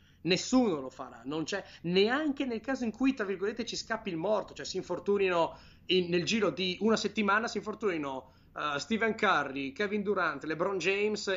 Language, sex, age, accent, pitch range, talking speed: Italian, male, 30-49, native, 150-195 Hz, 180 wpm